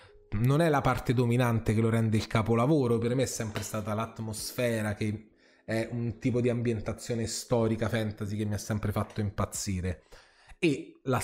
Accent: native